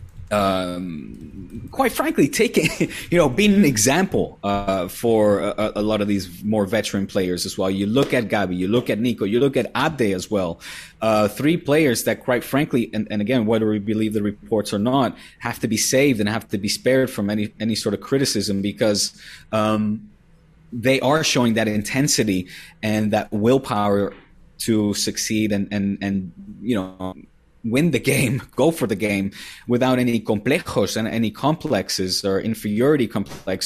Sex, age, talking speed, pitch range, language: male, 30-49, 175 wpm, 105-135 Hz, English